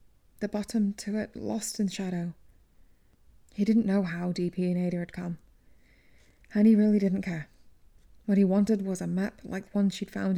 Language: English